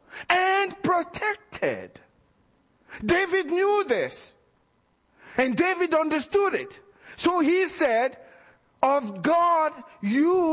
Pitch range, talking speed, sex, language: 265-350 Hz, 85 wpm, male, English